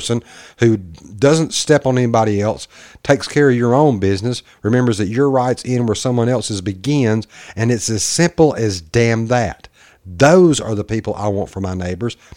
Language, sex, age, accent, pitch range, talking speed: English, male, 50-69, American, 95-130 Hz, 185 wpm